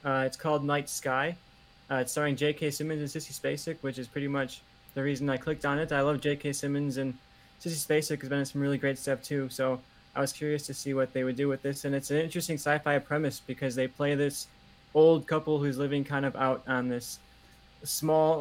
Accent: American